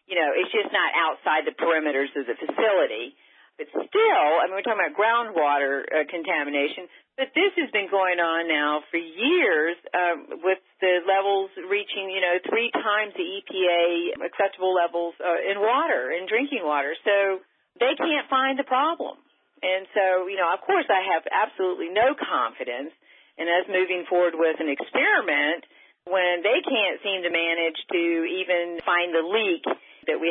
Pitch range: 155-210 Hz